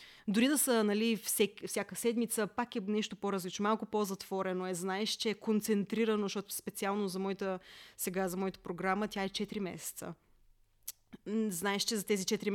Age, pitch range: 20-39, 185-220 Hz